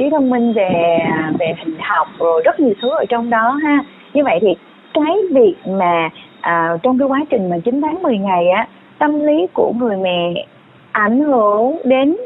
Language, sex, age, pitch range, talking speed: Vietnamese, female, 20-39, 195-270 Hz, 195 wpm